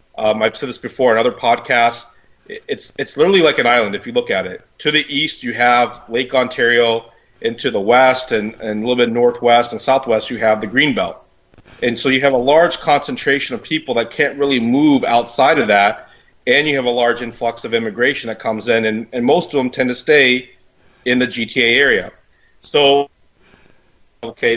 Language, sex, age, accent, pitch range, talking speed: English, male, 30-49, American, 110-130 Hz, 205 wpm